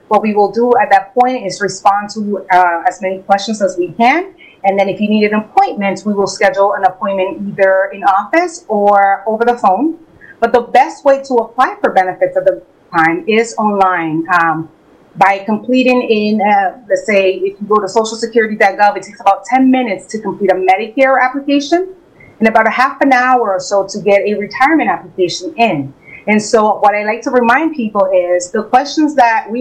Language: English